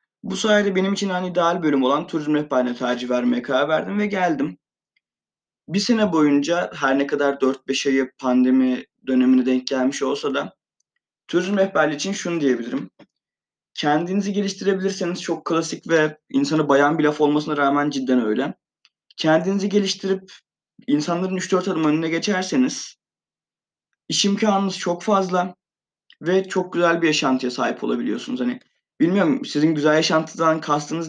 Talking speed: 140 wpm